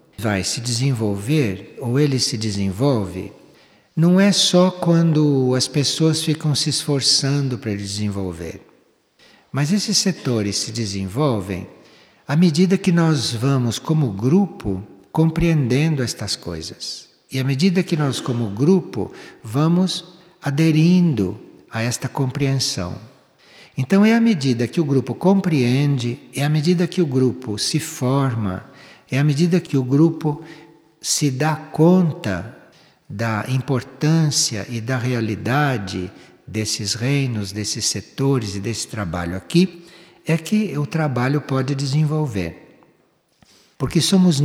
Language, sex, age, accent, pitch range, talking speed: Portuguese, male, 60-79, Brazilian, 115-160 Hz, 125 wpm